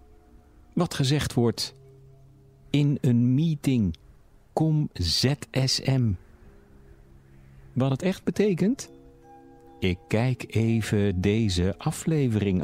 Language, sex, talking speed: Dutch, male, 80 wpm